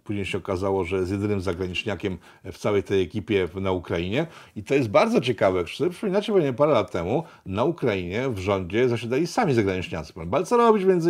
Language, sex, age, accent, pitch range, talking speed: Polish, male, 50-69, native, 105-145 Hz, 175 wpm